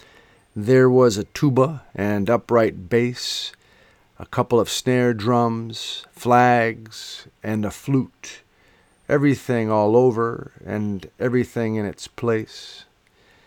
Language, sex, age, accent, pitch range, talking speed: English, male, 50-69, American, 105-125 Hz, 105 wpm